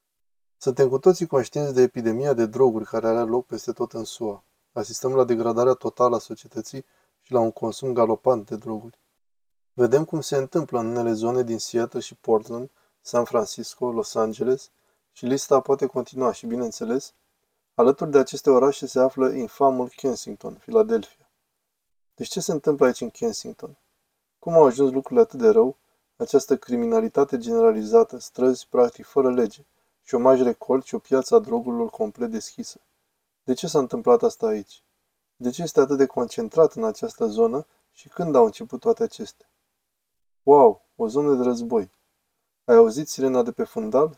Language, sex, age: Romanian, male, 20-39